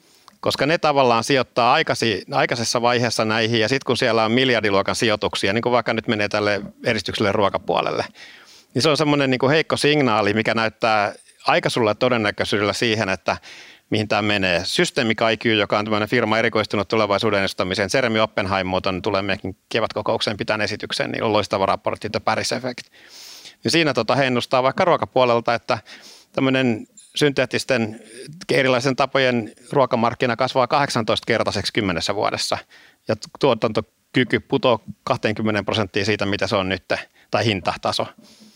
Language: Finnish